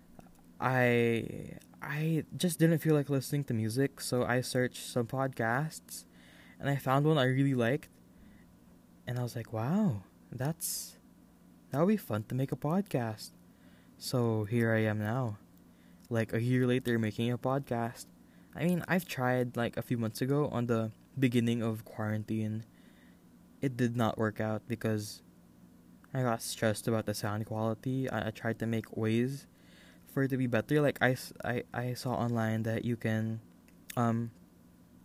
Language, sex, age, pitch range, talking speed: English, male, 10-29, 110-130 Hz, 165 wpm